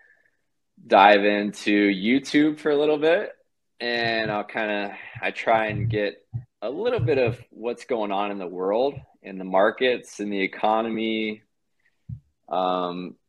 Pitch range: 90-105 Hz